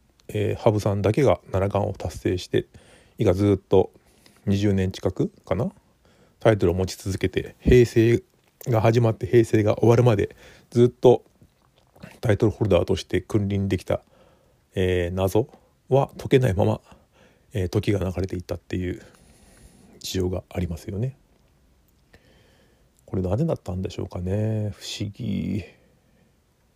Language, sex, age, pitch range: Japanese, male, 40-59, 95-120 Hz